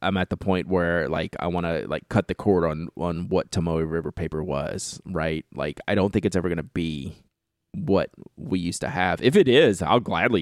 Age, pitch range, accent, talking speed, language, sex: 30-49, 85-105 Hz, American, 230 wpm, English, male